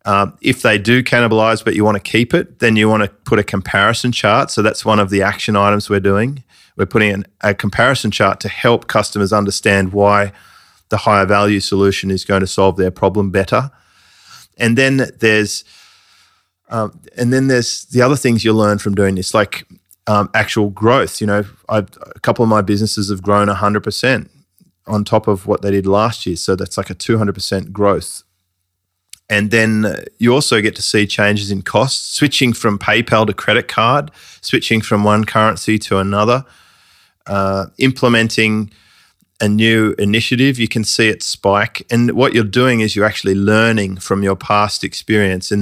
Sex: male